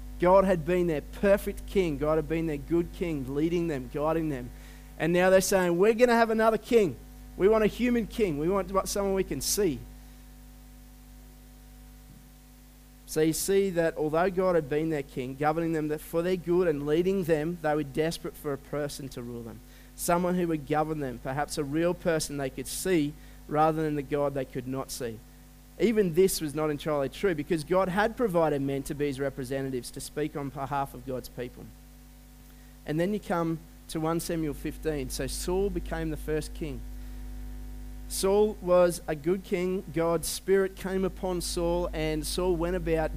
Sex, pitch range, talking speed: male, 145-185 Hz, 185 wpm